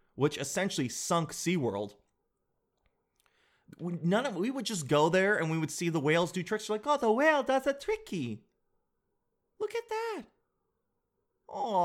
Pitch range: 145-225 Hz